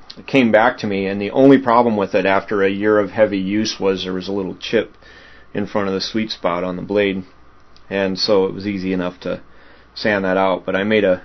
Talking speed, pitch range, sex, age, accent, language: 240 wpm, 95-115 Hz, male, 30-49, American, English